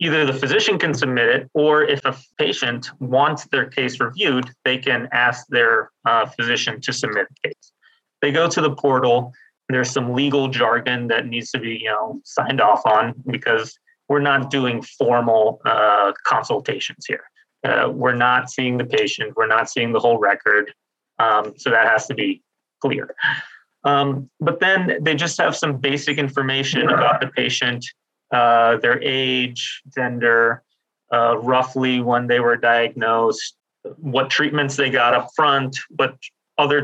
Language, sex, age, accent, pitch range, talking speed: English, male, 30-49, American, 125-145 Hz, 165 wpm